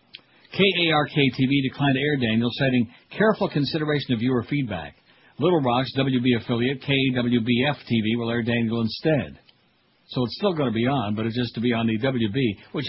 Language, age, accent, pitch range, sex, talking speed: English, 60-79, American, 120-155 Hz, male, 175 wpm